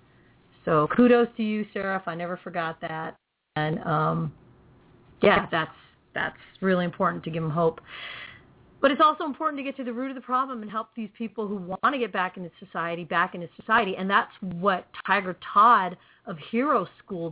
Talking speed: 185 wpm